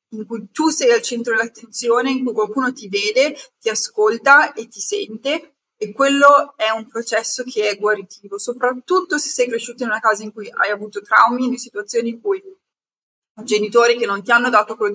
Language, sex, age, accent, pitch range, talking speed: Italian, female, 20-39, native, 215-280 Hz, 195 wpm